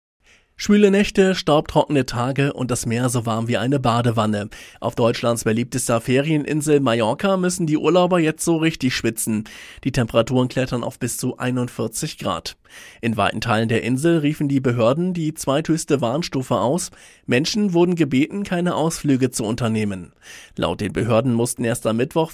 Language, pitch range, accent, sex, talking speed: German, 115-155 Hz, German, male, 155 wpm